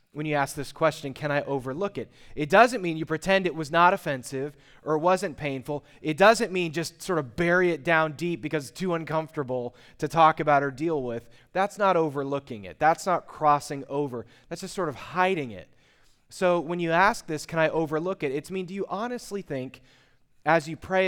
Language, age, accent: English, 30-49, American